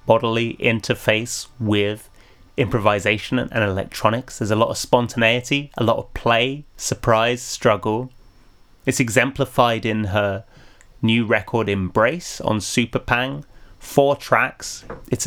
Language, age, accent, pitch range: English, 20-39, British, 100-125 Hz